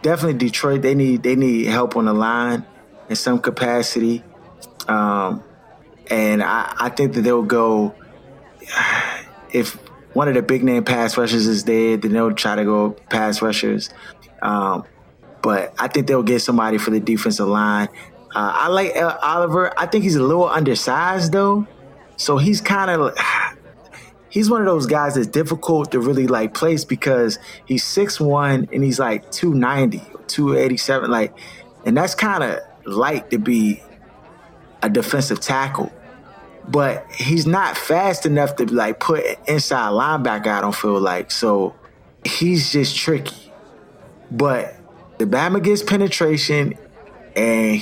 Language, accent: English, American